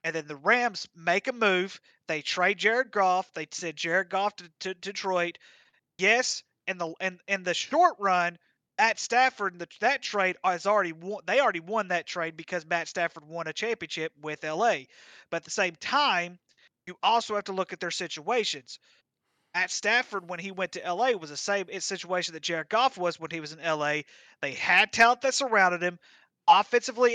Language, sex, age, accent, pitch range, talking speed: English, male, 30-49, American, 170-210 Hz, 190 wpm